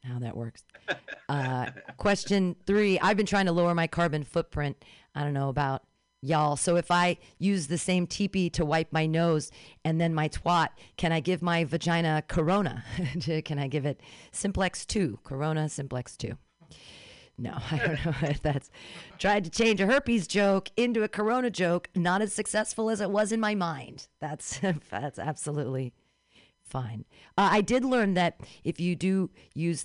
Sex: female